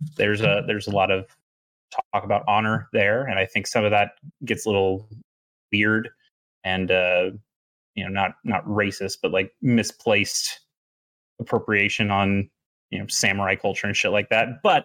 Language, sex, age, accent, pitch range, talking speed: English, male, 30-49, American, 100-125 Hz, 165 wpm